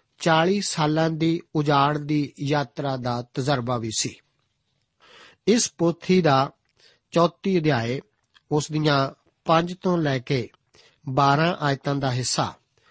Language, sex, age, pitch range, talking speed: Punjabi, male, 50-69, 135-165 Hz, 115 wpm